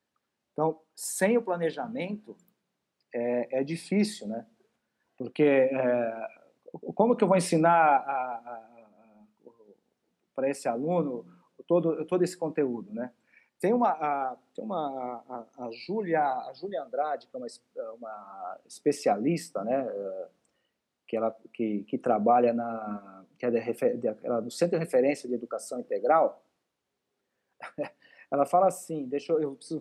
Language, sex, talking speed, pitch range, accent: Portuguese, male, 135 wpm, 130-190 Hz, Brazilian